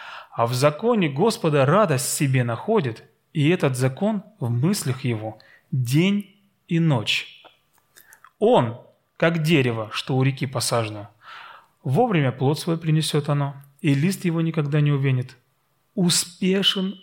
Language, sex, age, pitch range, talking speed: Russian, male, 30-49, 125-165 Hz, 125 wpm